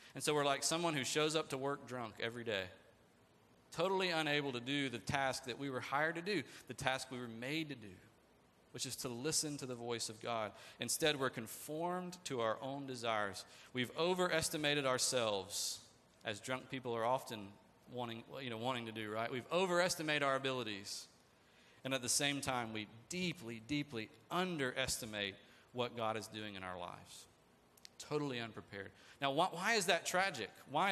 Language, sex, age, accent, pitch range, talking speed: English, male, 40-59, American, 115-155 Hz, 175 wpm